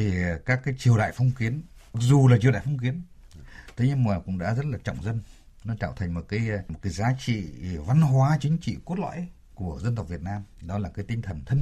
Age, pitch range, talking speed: 60-79, 100-145 Hz, 250 wpm